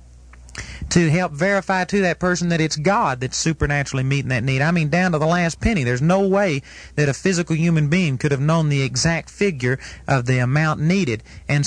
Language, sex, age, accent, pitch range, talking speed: English, male, 40-59, American, 140-180 Hz, 205 wpm